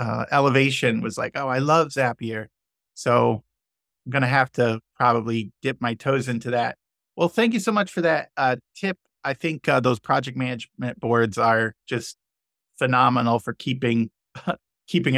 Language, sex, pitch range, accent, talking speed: English, male, 120-150 Hz, American, 160 wpm